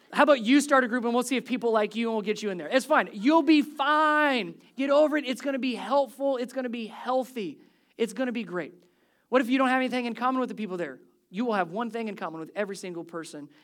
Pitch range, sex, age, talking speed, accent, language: 165-225 Hz, male, 20-39, 280 wpm, American, English